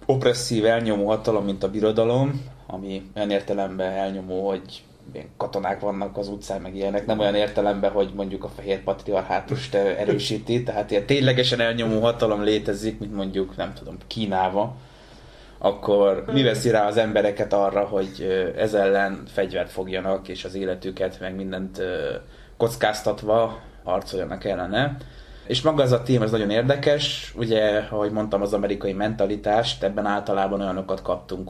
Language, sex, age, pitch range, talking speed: Hungarian, male, 20-39, 95-115 Hz, 140 wpm